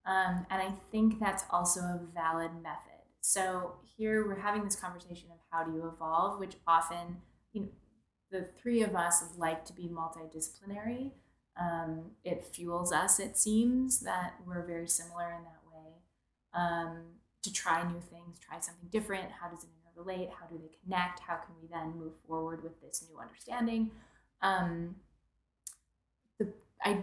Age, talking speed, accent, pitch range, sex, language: 20-39, 160 wpm, American, 170-200 Hz, female, English